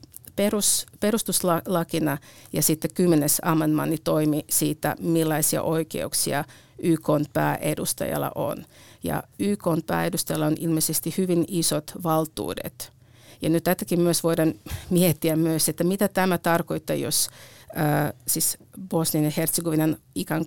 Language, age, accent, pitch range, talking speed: Finnish, 50-69, native, 155-175 Hz, 105 wpm